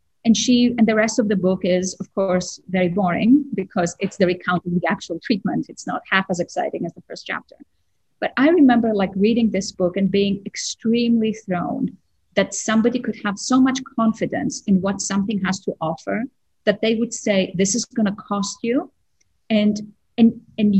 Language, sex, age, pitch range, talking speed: English, female, 30-49, 180-225 Hz, 190 wpm